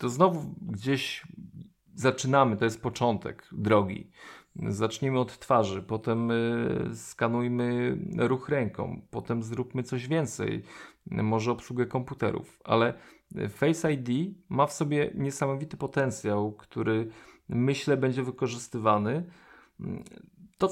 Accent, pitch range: native, 110-155 Hz